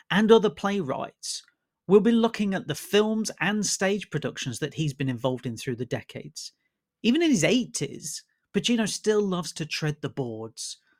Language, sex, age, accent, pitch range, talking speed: English, male, 30-49, British, 135-185 Hz, 170 wpm